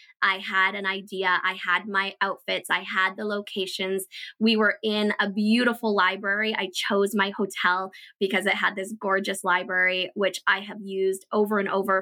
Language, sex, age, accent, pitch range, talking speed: English, female, 20-39, American, 195-240 Hz, 175 wpm